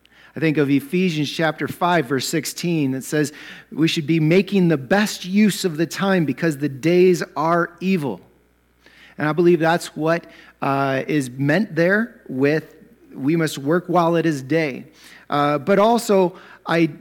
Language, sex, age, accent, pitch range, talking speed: English, male, 40-59, American, 140-180 Hz, 160 wpm